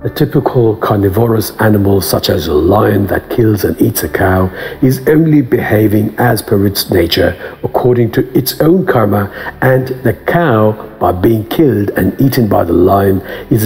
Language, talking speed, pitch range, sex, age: English, 165 wpm, 75-120 Hz, male, 60-79